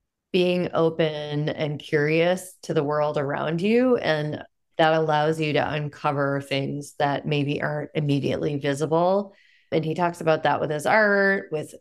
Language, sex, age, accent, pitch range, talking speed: English, female, 30-49, American, 145-175 Hz, 150 wpm